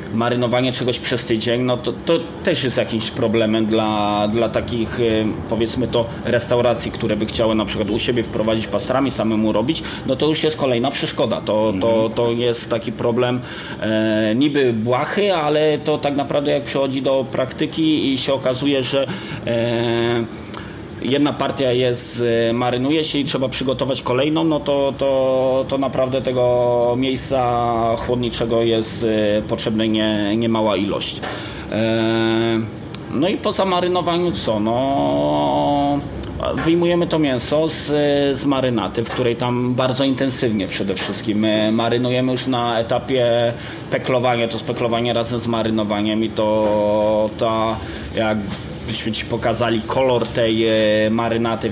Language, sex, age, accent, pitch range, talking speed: Polish, male, 20-39, native, 110-130 Hz, 135 wpm